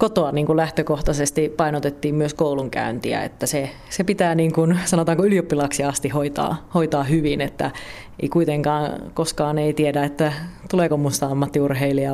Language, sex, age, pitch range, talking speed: Finnish, female, 30-49, 140-175 Hz, 140 wpm